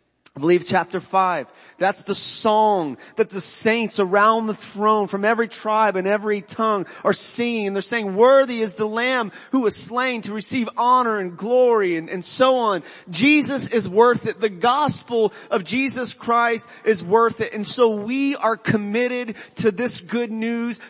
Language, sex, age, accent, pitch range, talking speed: English, male, 30-49, American, 180-230 Hz, 175 wpm